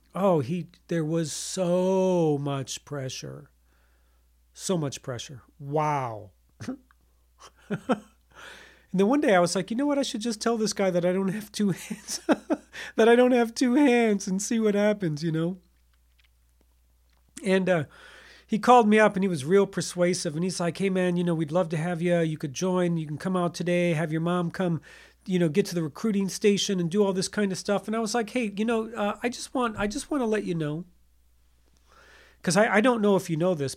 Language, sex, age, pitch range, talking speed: English, male, 40-59, 155-210 Hz, 215 wpm